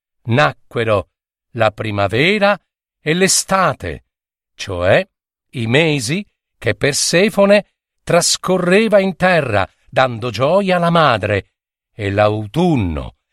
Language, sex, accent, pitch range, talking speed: Italian, male, native, 115-175 Hz, 85 wpm